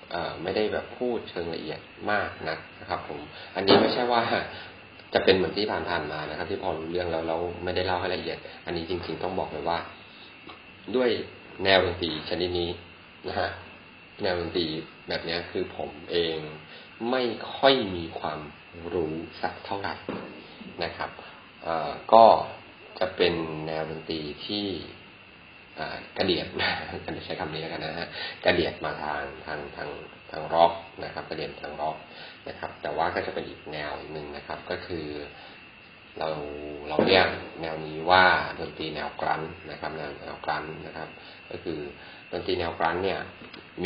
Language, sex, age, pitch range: Thai, male, 30-49, 75-90 Hz